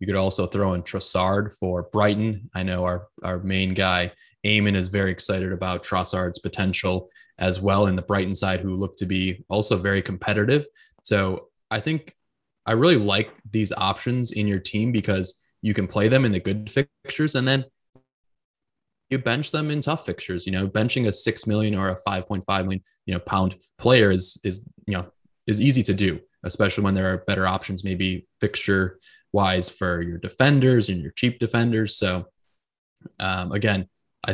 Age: 20-39